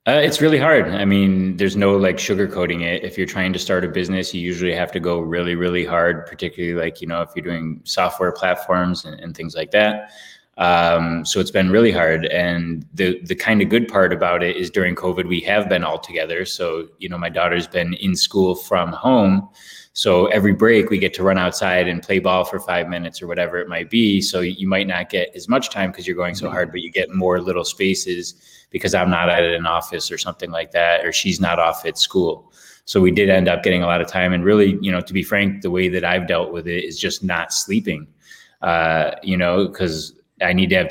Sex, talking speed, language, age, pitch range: male, 240 wpm, English, 20-39, 85-95 Hz